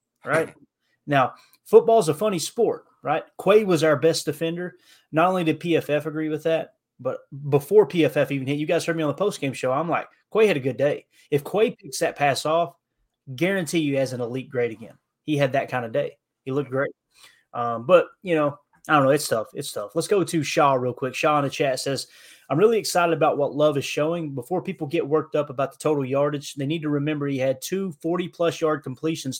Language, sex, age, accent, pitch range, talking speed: English, male, 20-39, American, 135-165 Hz, 225 wpm